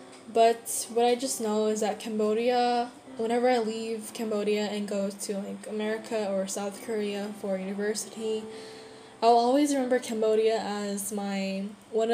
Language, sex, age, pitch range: Korean, female, 10-29, 205-230 Hz